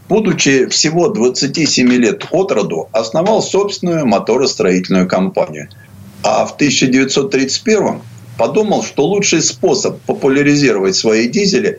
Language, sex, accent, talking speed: Russian, male, native, 100 wpm